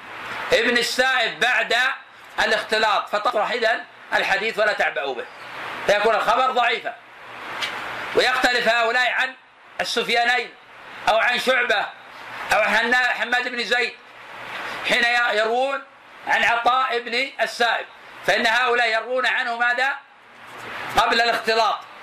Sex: male